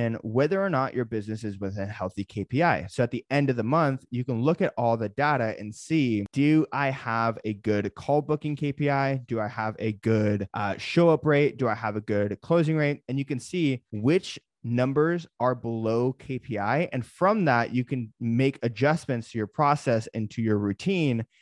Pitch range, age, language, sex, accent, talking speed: 115-150 Hz, 20-39, English, male, American, 205 wpm